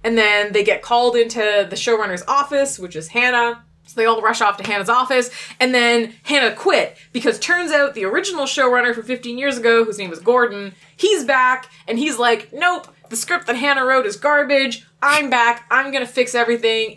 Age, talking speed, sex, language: 20-39, 205 wpm, female, English